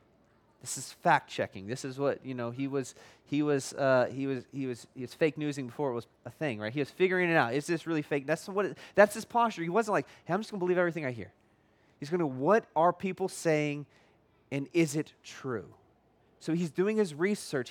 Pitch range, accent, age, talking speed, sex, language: 145-185 Hz, American, 30-49, 240 wpm, male, English